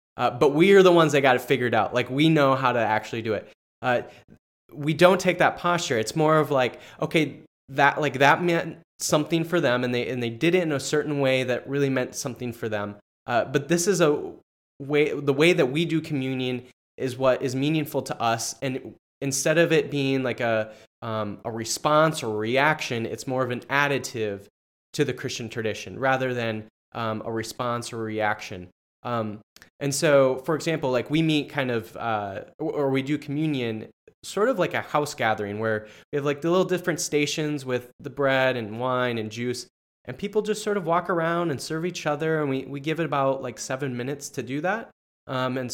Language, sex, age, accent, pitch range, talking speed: English, male, 20-39, American, 120-155 Hz, 215 wpm